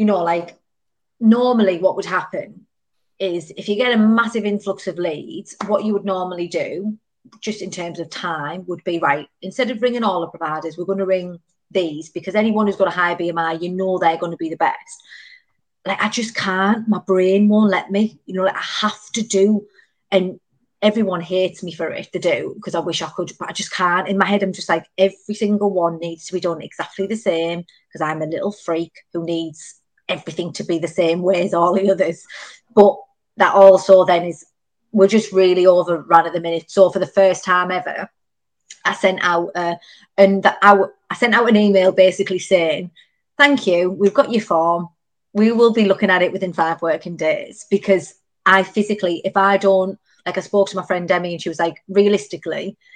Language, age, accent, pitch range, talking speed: English, 30-49, British, 175-205 Hz, 215 wpm